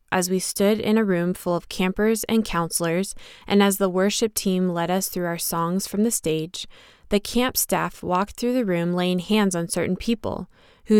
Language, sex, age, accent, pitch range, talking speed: English, female, 20-39, American, 170-210 Hz, 200 wpm